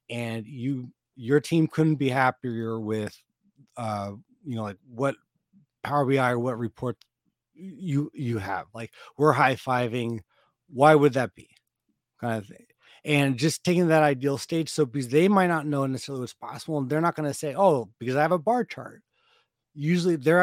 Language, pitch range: English, 120-155 Hz